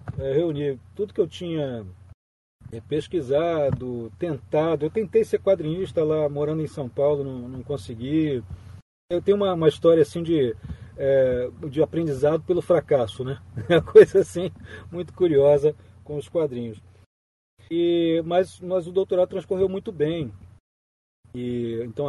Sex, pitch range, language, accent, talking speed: male, 120-165 Hz, Portuguese, Brazilian, 140 wpm